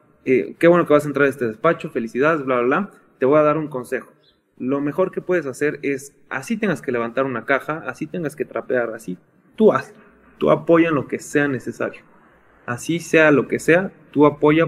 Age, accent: 20-39, Mexican